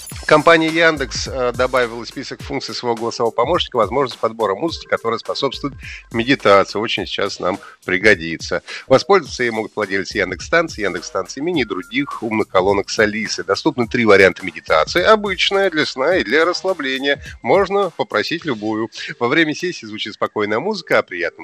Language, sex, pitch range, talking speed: Russian, male, 110-180 Hz, 150 wpm